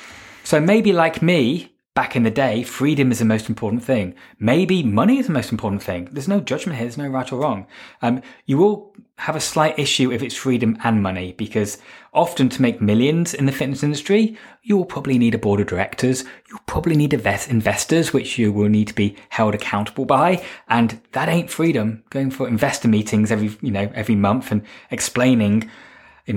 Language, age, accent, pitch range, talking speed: English, 20-39, British, 110-145 Hz, 205 wpm